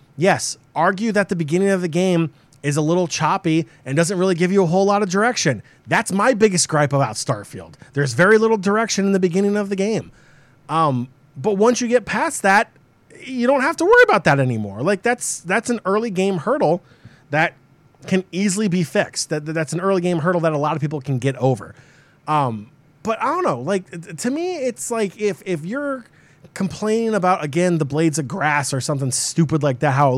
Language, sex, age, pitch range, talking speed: English, male, 30-49, 140-190 Hz, 215 wpm